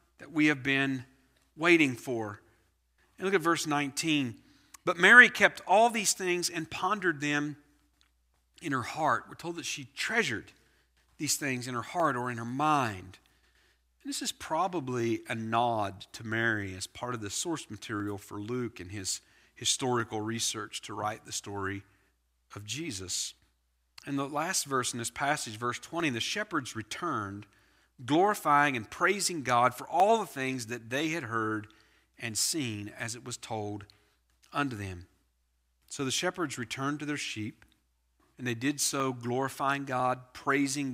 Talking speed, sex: 160 wpm, male